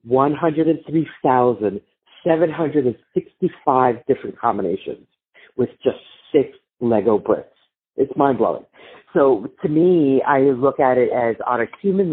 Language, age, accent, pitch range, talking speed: English, 40-59, American, 130-160 Hz, 150 wpm